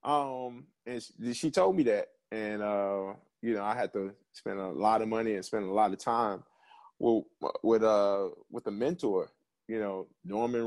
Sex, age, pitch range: male, 20-39, 100-140 Hz